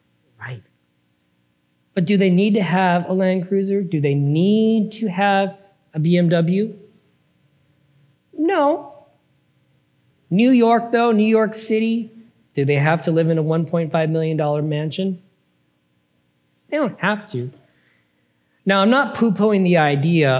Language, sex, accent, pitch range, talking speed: English, male, American, 115-185 Hz, 130 wpm